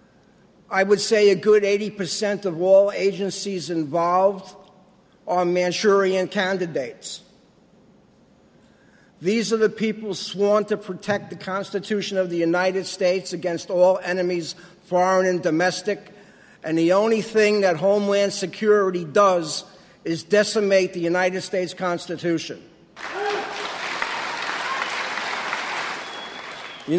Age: 50-69